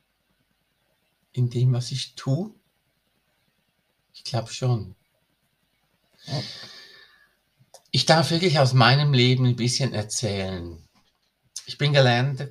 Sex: male